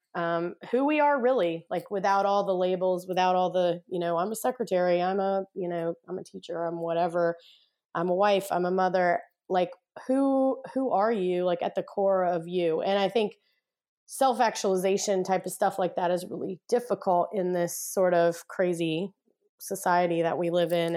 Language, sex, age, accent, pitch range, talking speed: English, female, 20-39, American, 175-200 Hz, 190 wpm